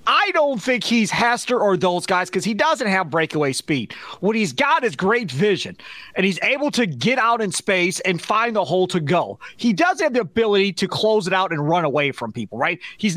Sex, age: male, 30-49